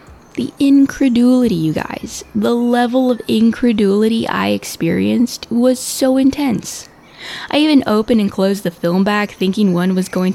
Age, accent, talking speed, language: 10-29, American, 145 wpm, English